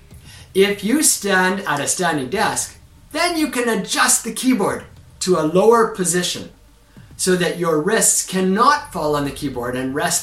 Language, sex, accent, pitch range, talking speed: English, male, American, 140-225 Hz, 165 wpm